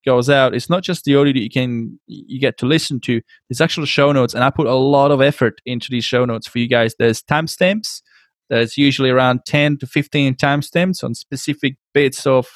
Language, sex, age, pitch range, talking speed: English, male, 20-39, 130-150 Hz, 220 wpm